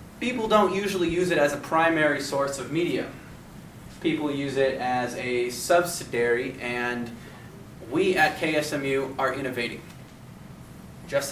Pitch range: 125-160 Hz